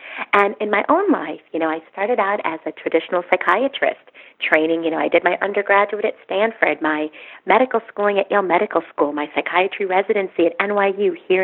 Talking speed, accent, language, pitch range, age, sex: 190 wpm, American, English, 160-240 Hz, 30-49, female